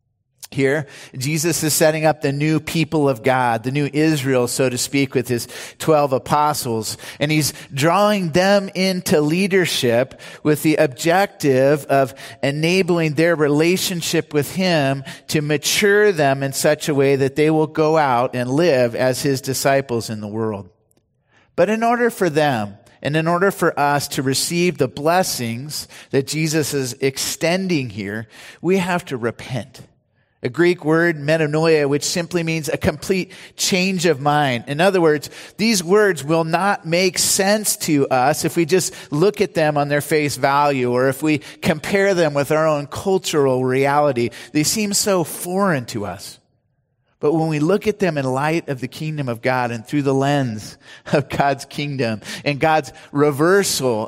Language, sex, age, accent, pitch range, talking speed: English, male, 40-59, American, 130-165 Hz, 165 wpm